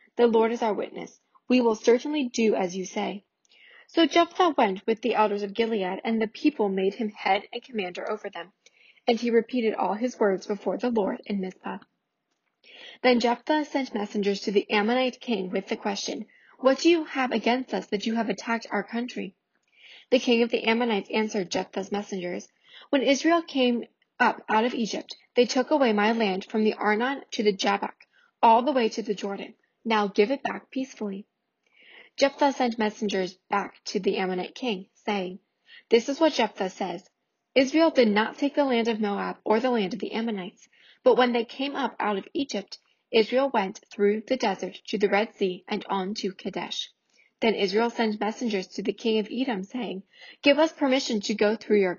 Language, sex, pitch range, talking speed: English, female, 205-250 Hz, 195 wpm